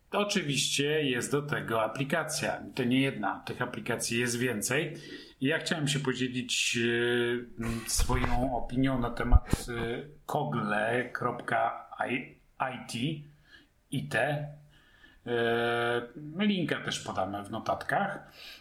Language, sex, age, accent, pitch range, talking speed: Polish, male, 40-59, native, 115-140 Hz, 95 wpm